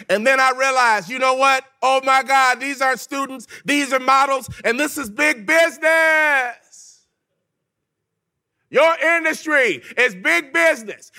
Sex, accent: male, American